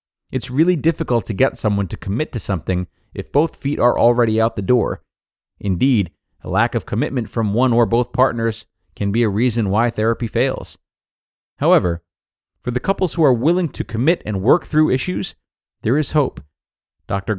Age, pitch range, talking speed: 30-49, 95-130 Hz, 180 wpm